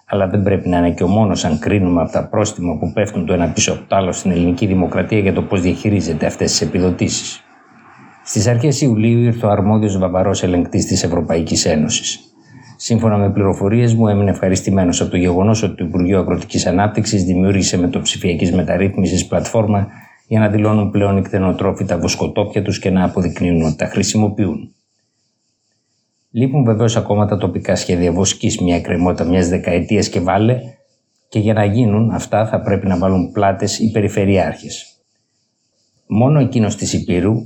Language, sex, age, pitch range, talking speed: Greek, male, 50-69, 95-110 Hz, 165 wpm